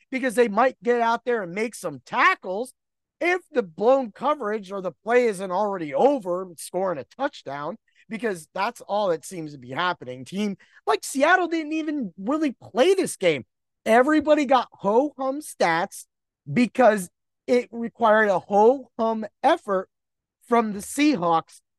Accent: American